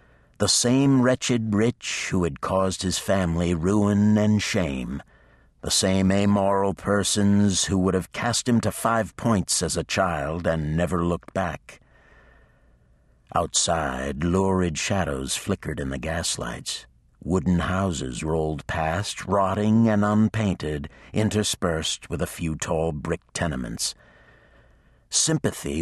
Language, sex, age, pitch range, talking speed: English, male, 60-79, 80-105 Hz, 125 wpm